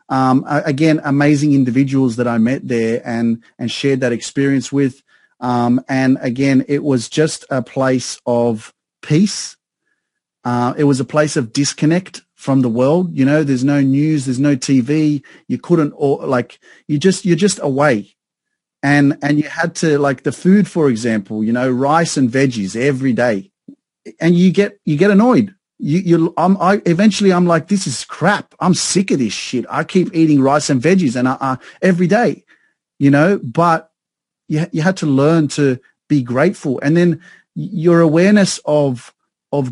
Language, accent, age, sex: English, Australian, 30-49, male